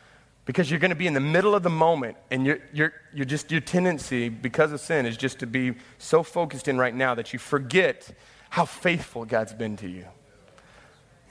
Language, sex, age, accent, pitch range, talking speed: English, male, 30-49, American, 145-190 Hz, 200 wpm